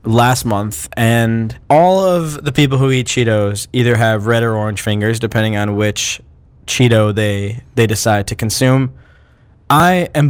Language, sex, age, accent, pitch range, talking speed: English, male, 20-39, American, 115-160 Hz, 155 wpm